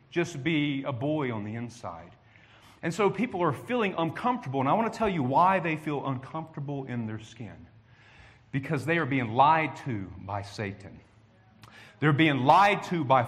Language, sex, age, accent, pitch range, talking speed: English, male, 40-59, American, 115-155 Hz, 175 wpm